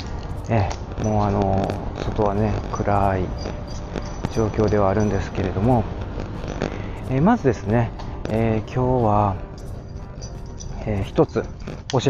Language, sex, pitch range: Japanese, male, 100-120 Hz